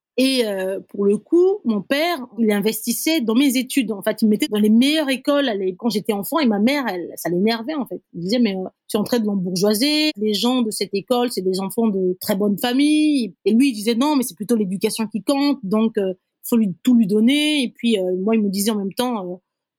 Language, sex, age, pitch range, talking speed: English, female, 20-39, 195-255 Hz, 250 wpm